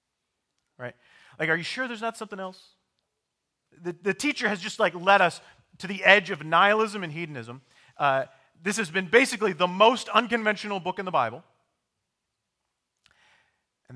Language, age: English, 40-59